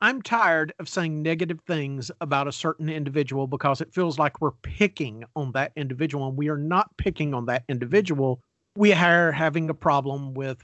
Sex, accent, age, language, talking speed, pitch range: male, American, 50-69, English, 185 wpm, 145-220 Hz